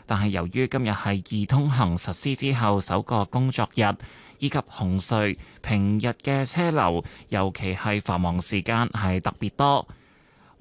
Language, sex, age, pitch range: Chinese, male, 20-39, 95-130 Hz